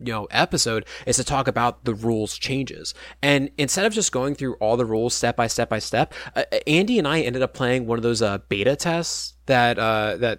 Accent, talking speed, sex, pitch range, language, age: American, 230 wpm, male, 110-135 Hz, English, 20-39